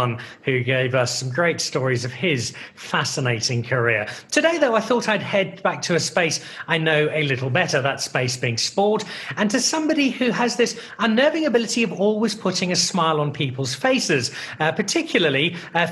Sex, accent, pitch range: male, British, 150-210 Hz